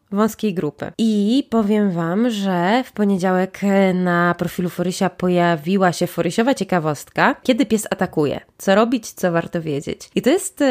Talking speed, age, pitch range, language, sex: 145 wpm, 20-39, 170-210 Hz, Polish, female